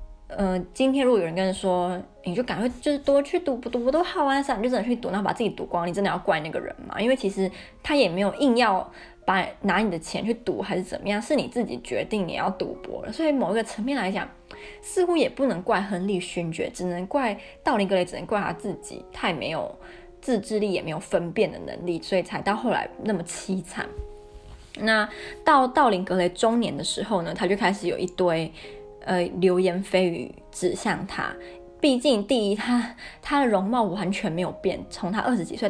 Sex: female